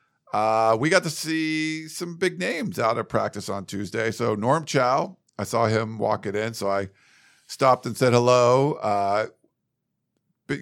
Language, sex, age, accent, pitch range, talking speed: English, male, 50-69, American, 100-130 Hz, 170 wpm